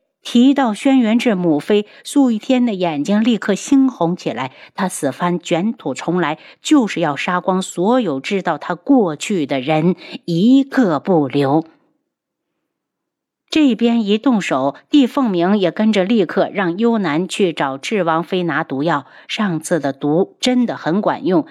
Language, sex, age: Chinese, female, 50-69